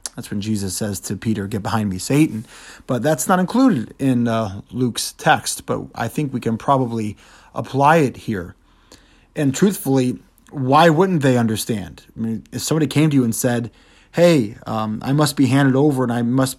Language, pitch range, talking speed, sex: English, 115-155 Hz, 190 wpm, male